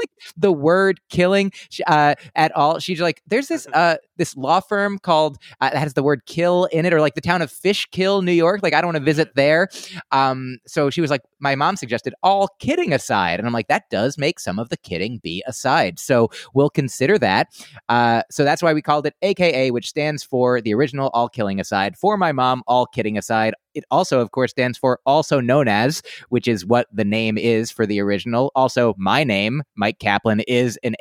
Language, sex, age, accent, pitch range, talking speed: English, male, 30-49, American, 115-160 Hz, 220 wpm